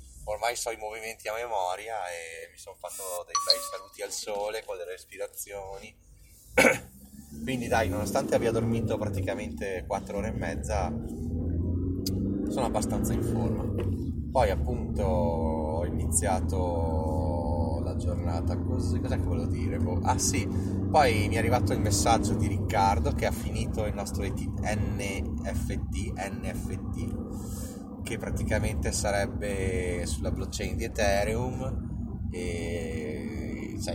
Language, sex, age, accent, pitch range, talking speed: Italian, male, 30-49, native, 90-110 Hz, 125 wpm